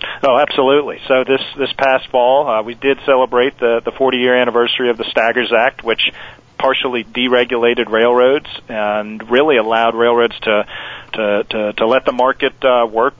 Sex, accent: male, American